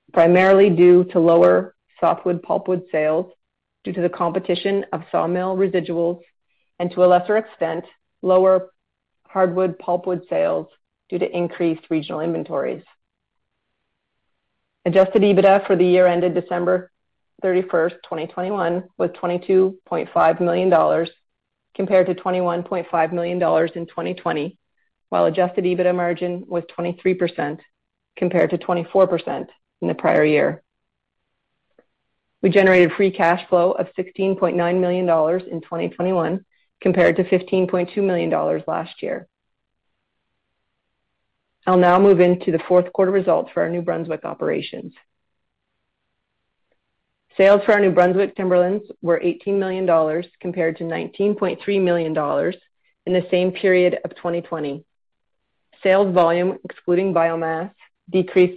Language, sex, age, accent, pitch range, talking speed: English, female, 40-59, American, 170-185 Hz, 115 wpm